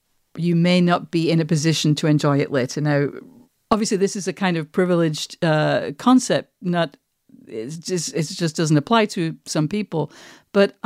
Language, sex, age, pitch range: English, female, 50-69, 160-210 Hz